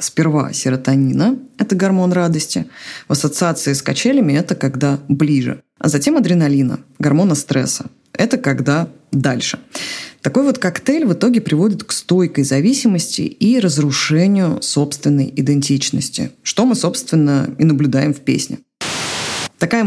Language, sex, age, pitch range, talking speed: Russian, female, 20-39, 145-195 Hz, 125 wpm